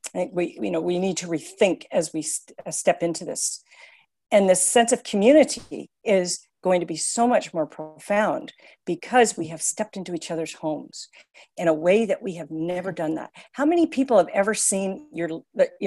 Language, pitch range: English, 180-235 Hz